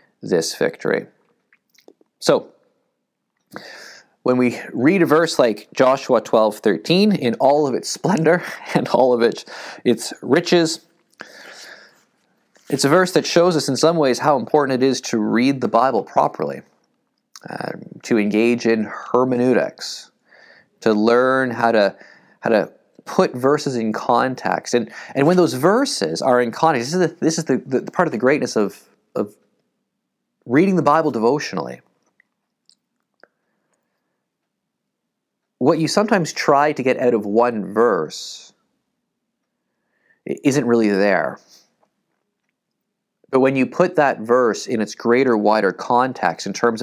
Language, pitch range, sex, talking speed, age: English, 115-150 Hz, male, 140 wpm, 20-39